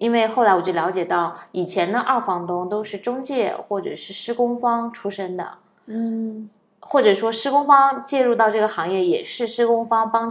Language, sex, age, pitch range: Chinese, female, 20-39, 180-235 Hz